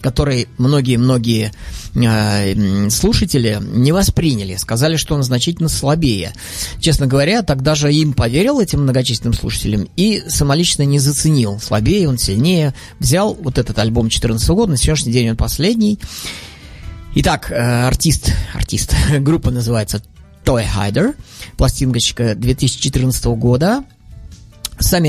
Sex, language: male, Russian